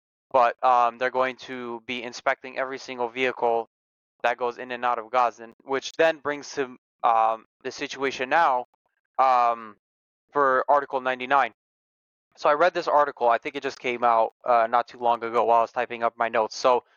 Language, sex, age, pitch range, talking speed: English, male, 20-39, 115-140 Hz, 185 wpm